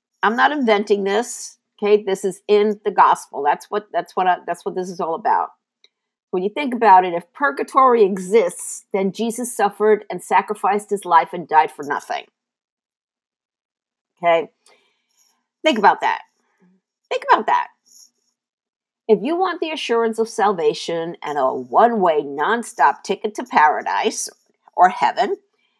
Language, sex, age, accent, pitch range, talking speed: English, female, 50-69, American, 195-270 Hz, 145 wpm